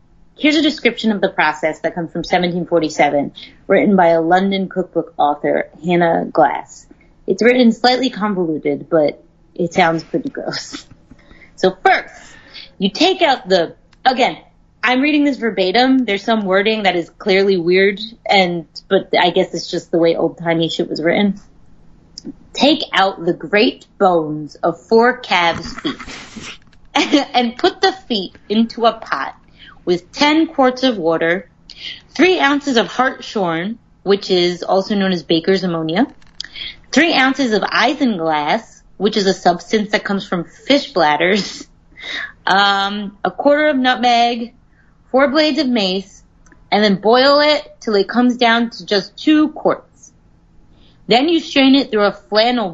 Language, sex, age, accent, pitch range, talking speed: English, female, 30-49, American, 180-255 Hz, 150 wpm